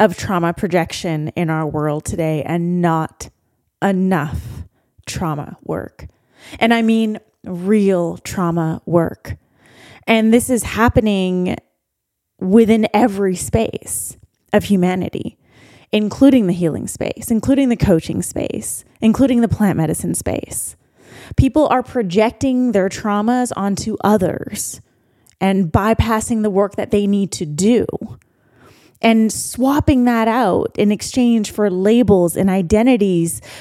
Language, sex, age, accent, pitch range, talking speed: English, female, 20-39, American, 170-240 Hz, 120 wpm